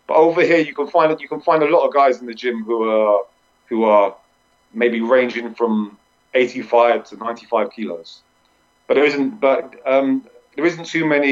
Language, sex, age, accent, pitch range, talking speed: English, male, 40-59, British, 115-140 Hz, 185 wpm